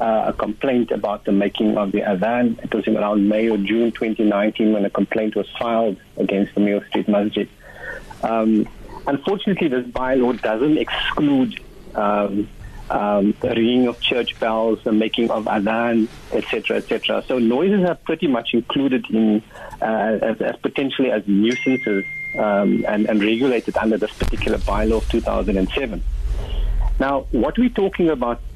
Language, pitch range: English, 105-135 Hz